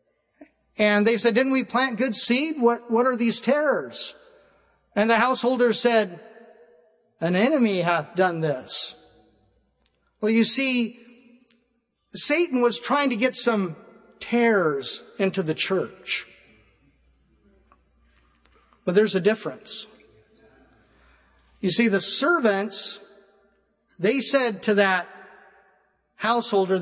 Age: 50-69